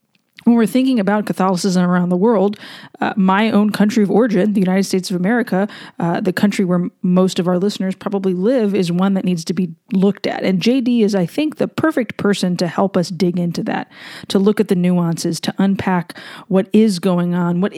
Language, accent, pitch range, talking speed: English, American, 180-210 Hz, 215 wpm